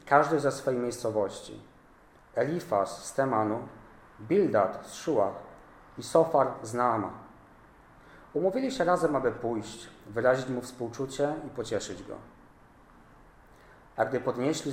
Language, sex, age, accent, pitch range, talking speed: Polish, male, 40-59, native, 110-135 Hz, 115 wpm